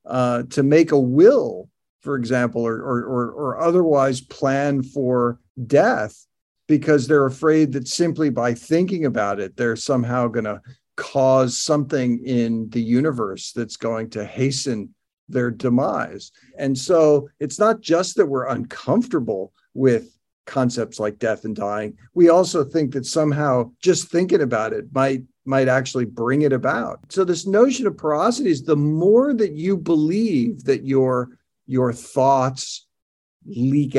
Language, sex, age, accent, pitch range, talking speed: English, male, 50-69, American, 120-150 Hz, 145 wpm